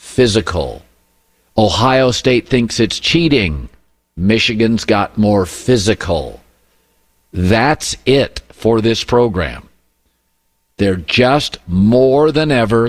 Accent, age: American, 50-69